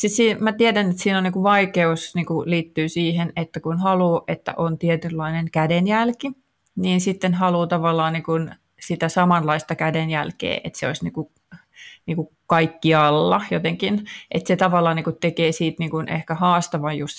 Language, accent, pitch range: Finnish, native, 160-180 Hz